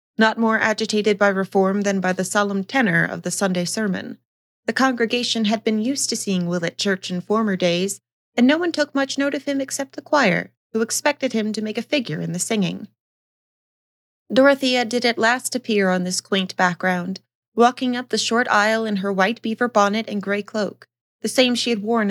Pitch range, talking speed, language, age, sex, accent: 195-240 Hz, 205 wpm, English, 30-49, female, American